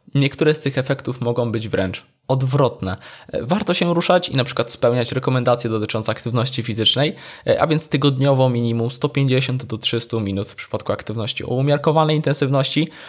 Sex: male